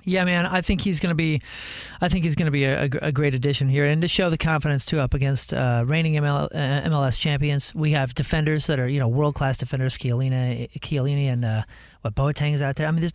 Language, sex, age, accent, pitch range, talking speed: English, male, 40-59, American, 135-175 Hz, 240 wpm